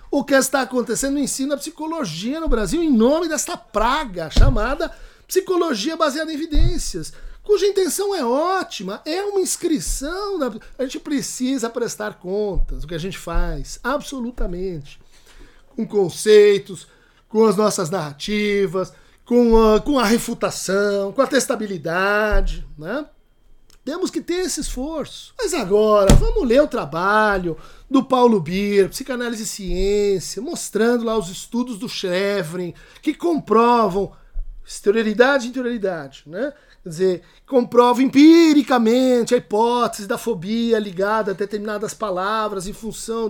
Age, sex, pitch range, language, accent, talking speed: 60-79, male, 200-275 Hz, Portuguese, Brazilian, 135 wpm